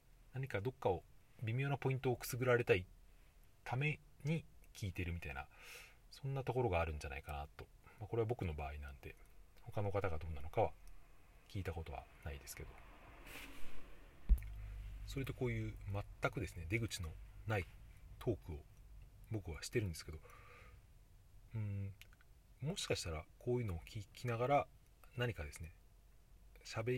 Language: Japanese